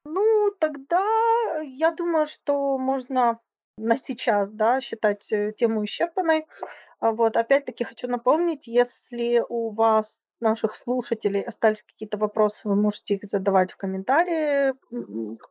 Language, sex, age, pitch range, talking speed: Ukrainian, female, 20-39, 205-245 Hz, 120 wpm